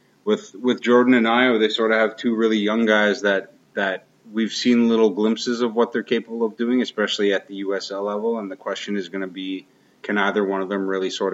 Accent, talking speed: American, 235 wpm